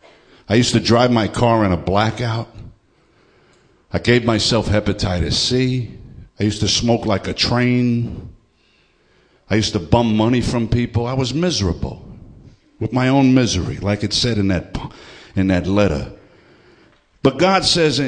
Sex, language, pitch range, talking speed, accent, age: male, English, 95-125 Hz, 155 wpm, American, 60-79